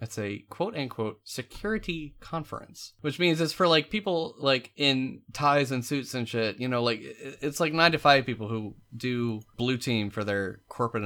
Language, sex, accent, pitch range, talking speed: English, male, American, 110-160 Hz, 185 wpm